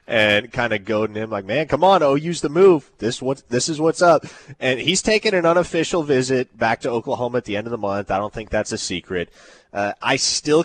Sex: male